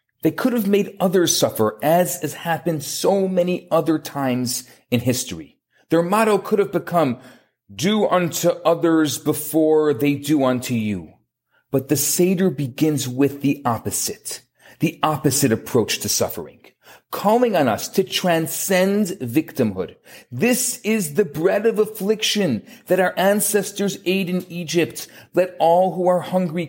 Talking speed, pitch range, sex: 140 wpm, 130-185 Hz, male